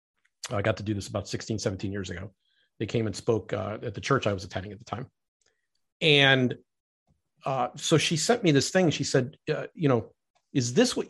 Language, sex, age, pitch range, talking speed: English, male, 40-59, 120-150 Hz, 215 wpm